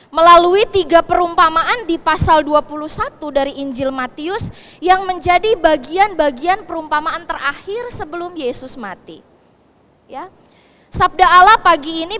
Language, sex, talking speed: Indonesian, female, 110 wpm